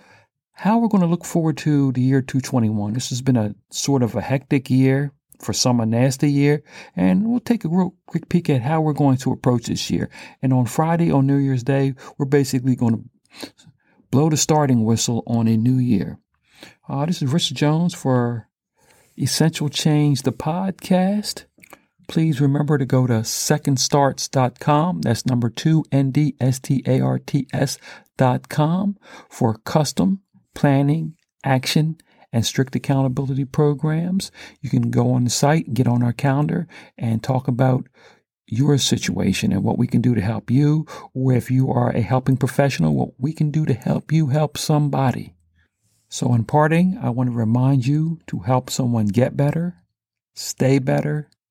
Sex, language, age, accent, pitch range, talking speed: male, English, 60-79, American, 125-155 Hz, 165 wpm